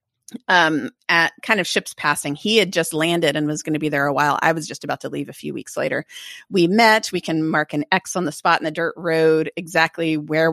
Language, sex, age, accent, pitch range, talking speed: English, female, 30-49, American, 155-205 Hz, 250 wpm